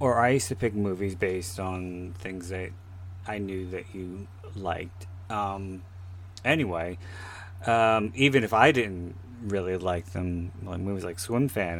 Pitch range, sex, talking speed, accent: 90-105 Hz, male, 155 wpm, American